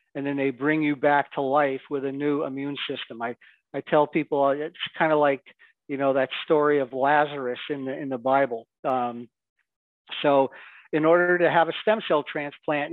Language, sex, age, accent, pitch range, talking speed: English, male, 50-69, American, 135-155 Hz, 195 wpm